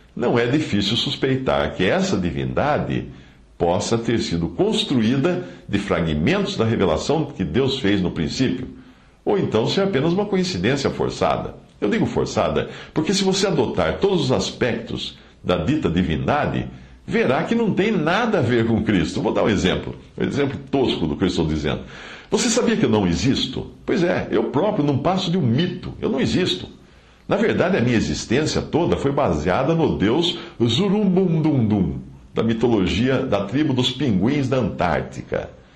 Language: English